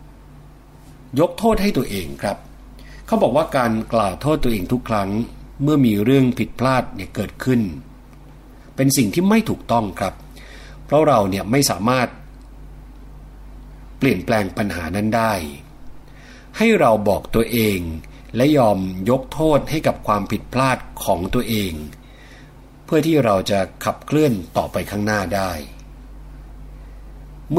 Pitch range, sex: 100-135 Hz, male